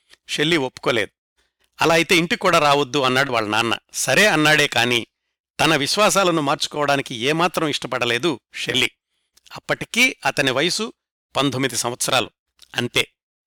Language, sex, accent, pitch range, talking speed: Telugu, male, native, 130-165 Hz, 105 wpm